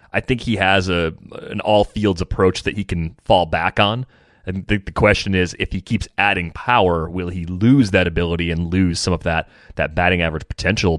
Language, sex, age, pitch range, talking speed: English, male, 30-49, 90-110 Hz, 205 wpm